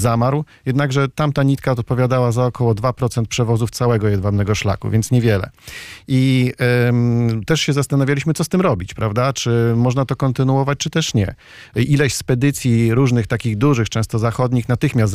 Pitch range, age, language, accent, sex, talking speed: 115-140 Hz, 40-59, Polish, native, male, 150 wpm